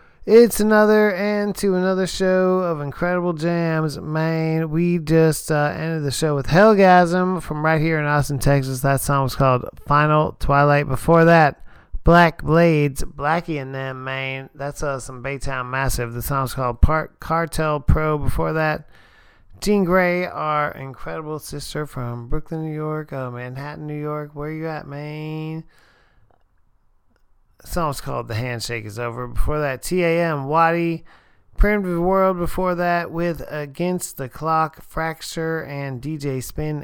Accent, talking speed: American, 150 wpm